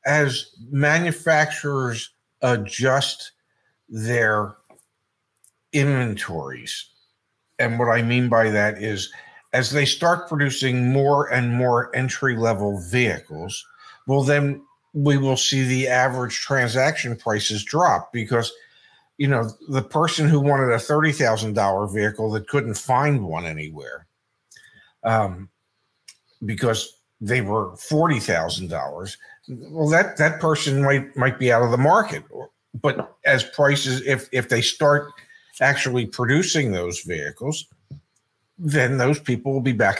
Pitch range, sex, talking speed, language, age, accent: 115-145 Hz, male, 120 wpm, English, 50-69, American